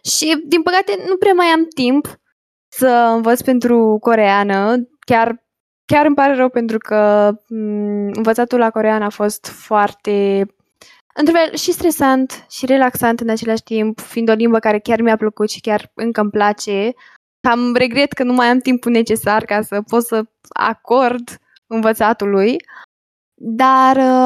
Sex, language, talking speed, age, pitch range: female, Romanian, 155 wpm, 10-29, 210-255 Hz